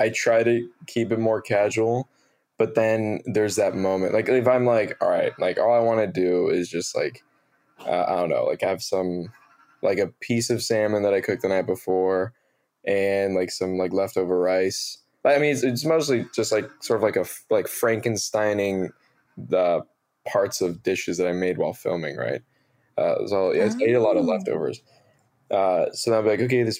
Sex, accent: male, American